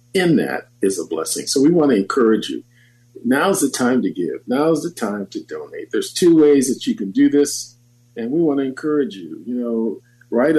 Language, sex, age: English, male, 50-69